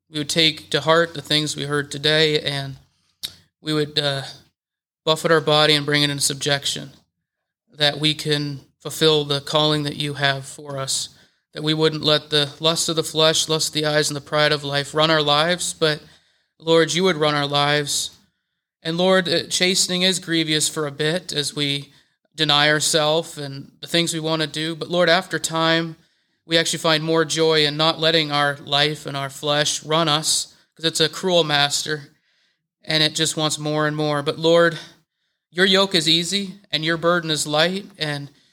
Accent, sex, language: American, male, English